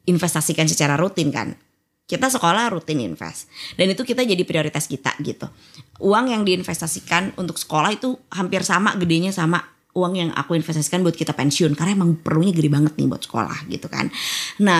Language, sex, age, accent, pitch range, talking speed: Indonesian, female, 20-39, native, 160-205 Hz, 175 wpm